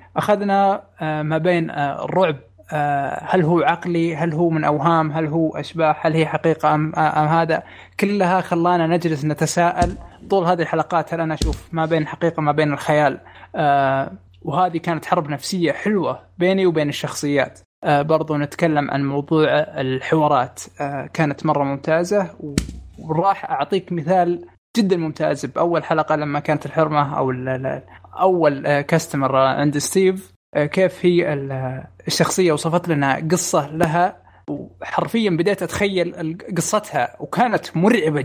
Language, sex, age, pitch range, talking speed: Arabic, male, 20-39, 145-175 Hz, 125 wpm